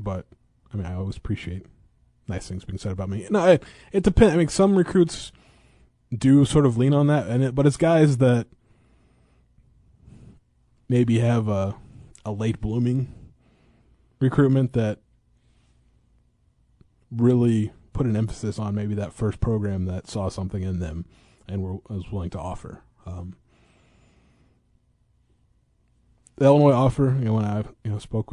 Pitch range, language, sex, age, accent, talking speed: 95-120 Hz, English, male, 20-39, American, 150 wpm